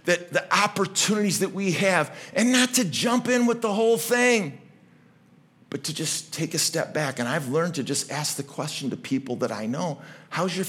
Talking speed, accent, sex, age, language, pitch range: 210 wpm, American, male, 50-69, English, 170-220 Hz